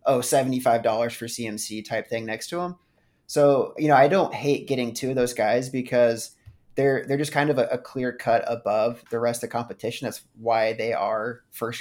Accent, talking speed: American, 210 wpm